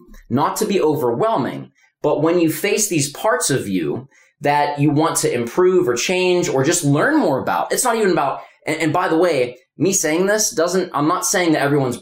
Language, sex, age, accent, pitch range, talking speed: English, male, 20-39, American, 120-160 Hz, 210 wpm